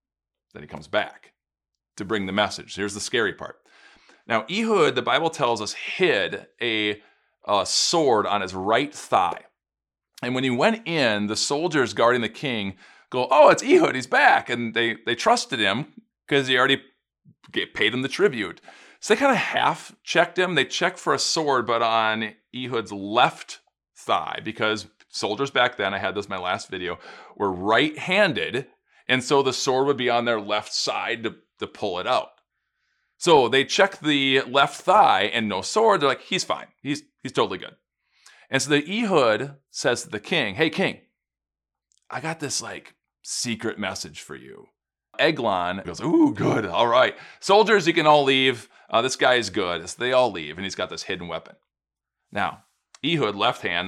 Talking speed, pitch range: 180 wpm, 105-140 Hz